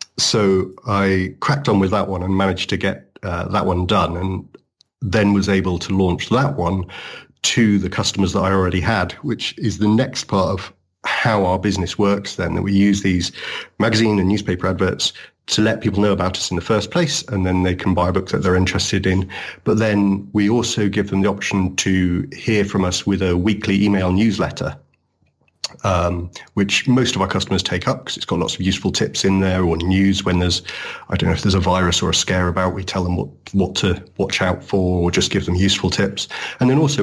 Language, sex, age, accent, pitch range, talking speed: English, male, 40-59, British, 90-105 Hz, 220 wpm